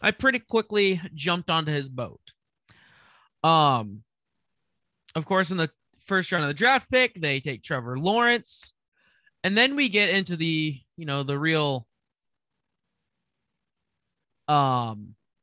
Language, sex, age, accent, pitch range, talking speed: English, male, 20-39, American, 140-190 Hz, 130 wpm